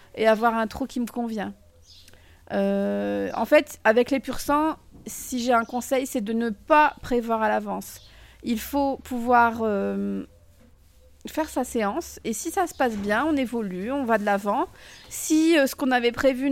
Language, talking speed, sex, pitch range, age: French, 180 wpm, female, 215-260 Hz, 30-49